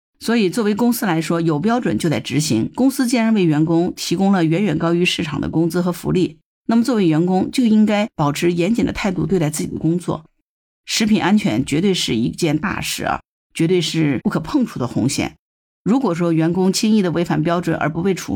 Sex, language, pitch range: female, Chinese, 150-185 Hz